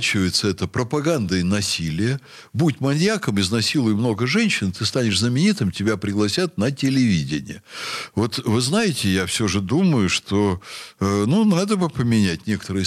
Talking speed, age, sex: 135 wpm, 60-79, male